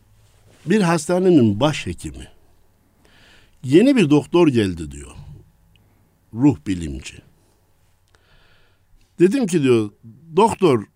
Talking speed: 75 wpm